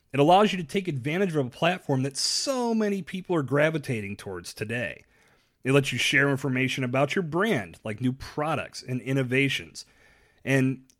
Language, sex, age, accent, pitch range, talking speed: English, male, 30-49, American, 115-170 Hz, 170 wpm